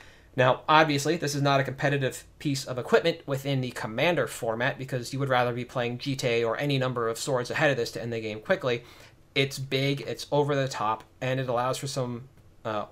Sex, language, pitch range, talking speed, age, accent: male, English, 115-140 Hz, 215 wpm, 30-49, American